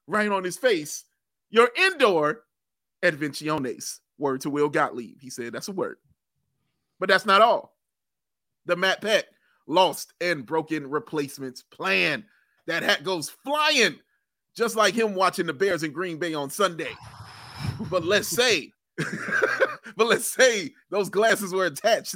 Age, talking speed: 30-49, 145 wpm